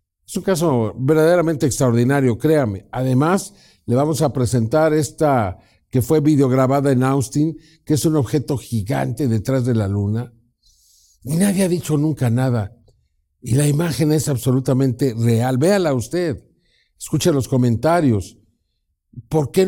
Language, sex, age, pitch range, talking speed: Spanish, male, 50-69, 110-145 Hz, 135 wpm